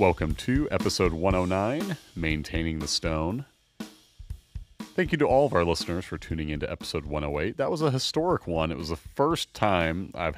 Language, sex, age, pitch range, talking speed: English, male, 40-59, 80-100 Hz, 180 wpm